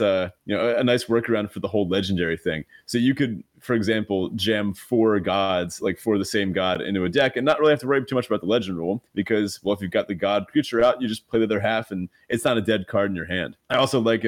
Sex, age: male, 30-49